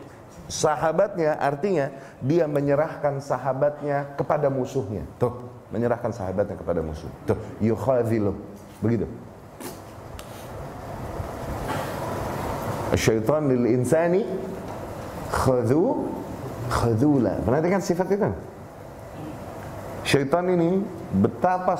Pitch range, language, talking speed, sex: 120-190 Hz, Indonesian, 60 wpm, male